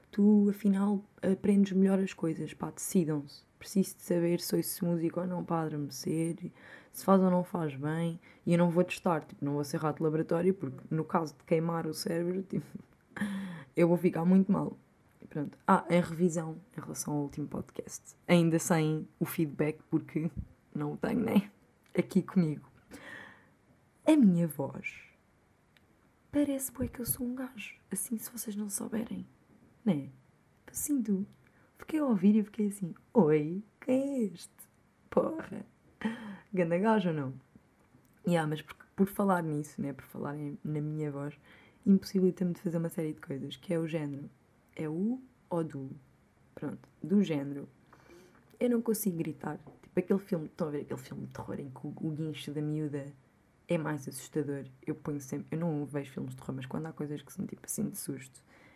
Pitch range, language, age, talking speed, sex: 155-195 Hz, Portuguese, 20-39, 185 wpm, female